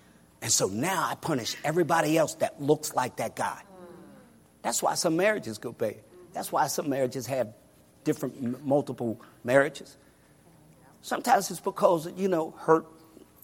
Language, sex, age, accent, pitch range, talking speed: English, male, 50-69, American, 115-165 Hz, 145 wpm